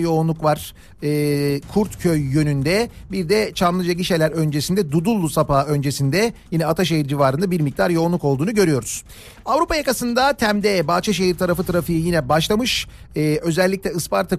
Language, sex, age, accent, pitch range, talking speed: Turkish, male, 50-69, native, 145-185 Hz, 135 wpm